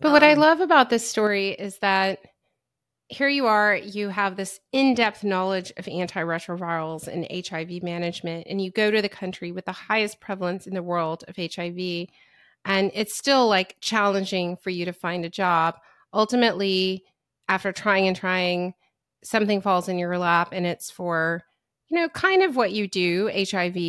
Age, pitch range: 30-49, 180-220 Hz